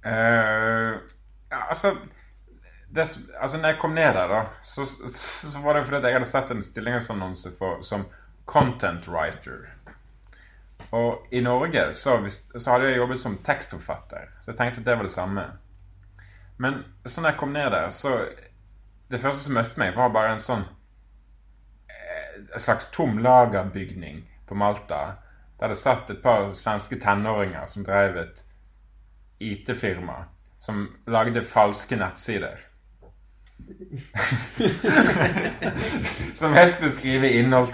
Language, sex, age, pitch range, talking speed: English, male, 30-49, 100-130 Hz, 135 wpm